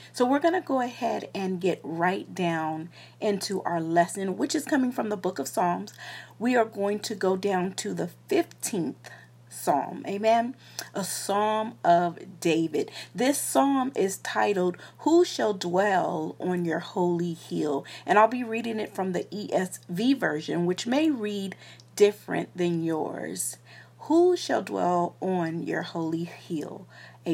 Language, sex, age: English, female, 40-59